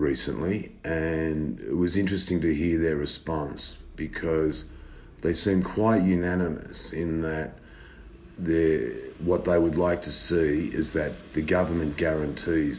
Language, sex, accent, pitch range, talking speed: English, male, Australian, 75-90 Hz, 125 wpm